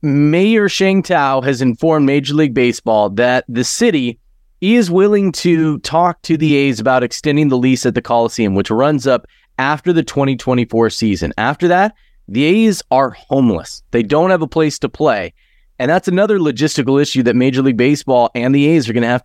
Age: 30-49